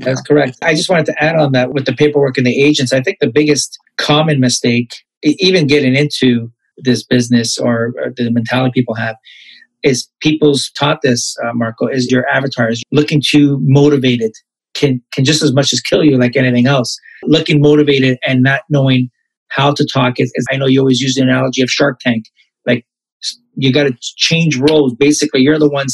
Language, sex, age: English, male, 30-49